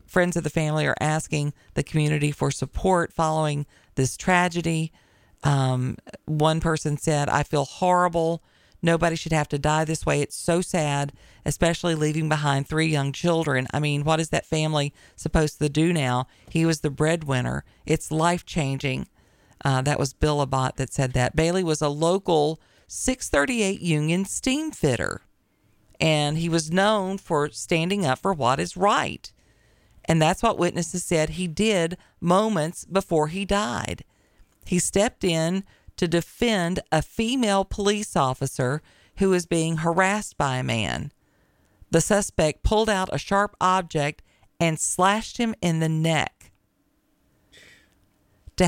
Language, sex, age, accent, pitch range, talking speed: English, female, 40-59, American, 145-180 Hz, 150 wpm